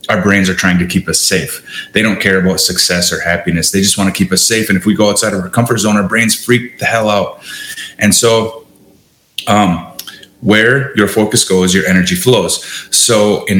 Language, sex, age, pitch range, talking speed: English, male, 30-49, 95-120 Hz, 215 wpm